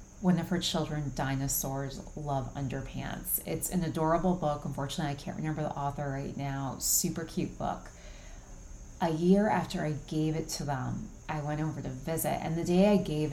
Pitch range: 140-165 Hz